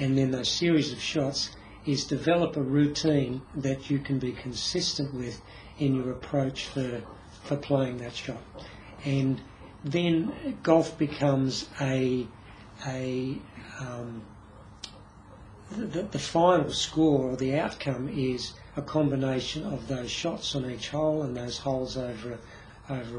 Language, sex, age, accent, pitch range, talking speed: English, male, 60-79, Australian, 125-150 Hz, 135 wpm